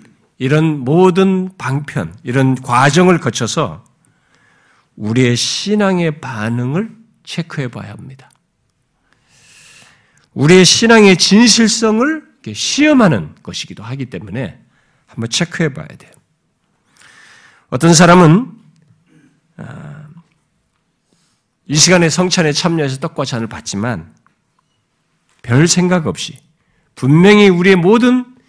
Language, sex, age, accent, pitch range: Korean, male, 50-69, native, 130-210 Hz